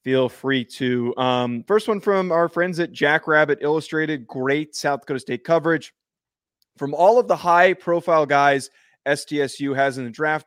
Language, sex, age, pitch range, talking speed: English, male, 20-39, 130-165 Hz, 170 wpm